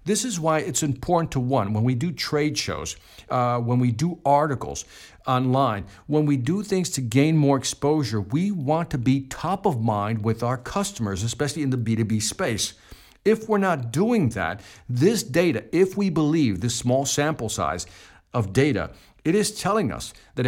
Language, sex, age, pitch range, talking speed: English, male, 50-69, 115-160 Hz, 180 wpm